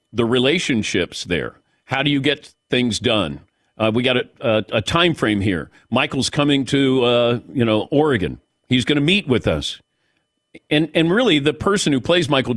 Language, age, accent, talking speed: English, 50-69, American, 185 wpm